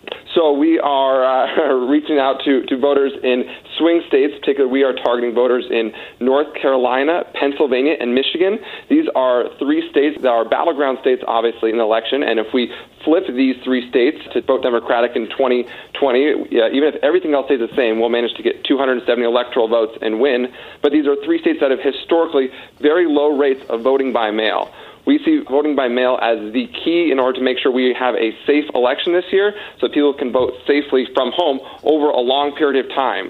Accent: American